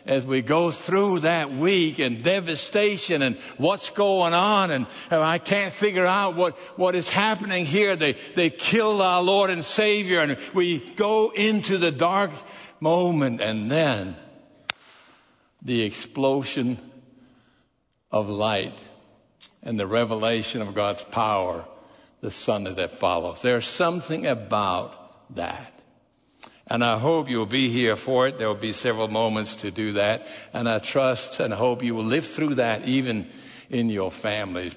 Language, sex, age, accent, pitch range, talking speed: English, male, 60-79, American, 110-175 Hz, 150 wpm